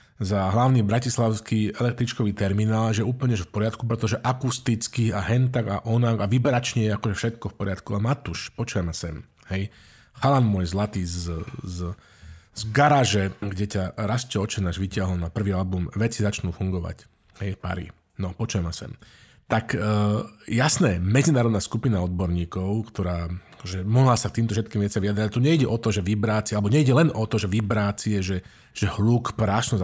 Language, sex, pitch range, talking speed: Slovak, male, 100-125 Hz, 165 wpm